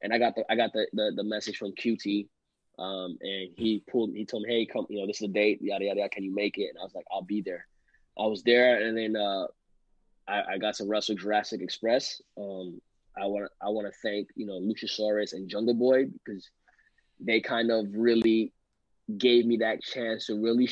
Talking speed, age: 225 wpm, 20-39